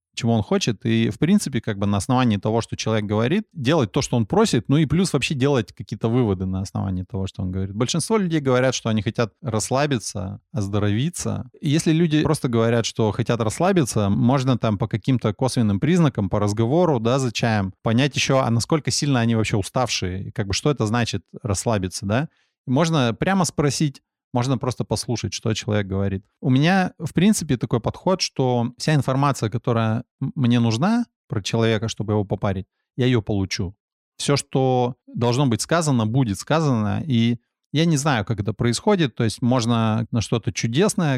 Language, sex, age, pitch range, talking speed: Russian, male, 20-39, 110-140 Hz, 180 wpm